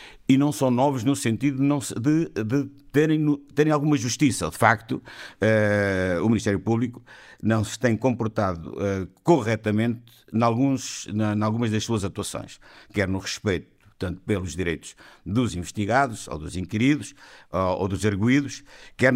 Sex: male